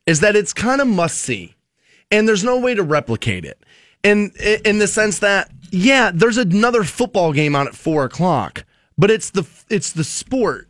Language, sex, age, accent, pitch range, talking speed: English, male, 20-39, American, 150-210 Hz, 190 wpm